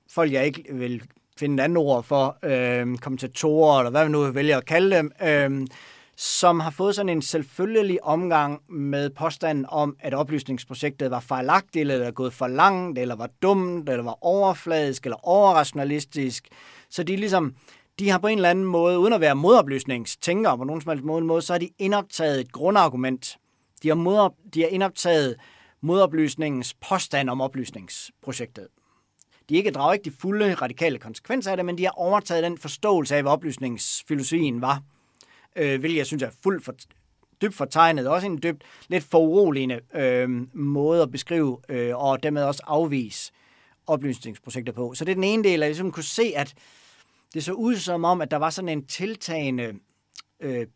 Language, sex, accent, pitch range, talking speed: Danish, male, native, 130-175 Hz, 180 wpm